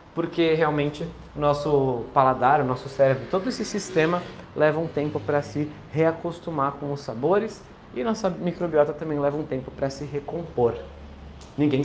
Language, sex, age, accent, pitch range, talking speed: Portuguese, male, 20-39, Brazilian, 130-165 Hz, 155 wpm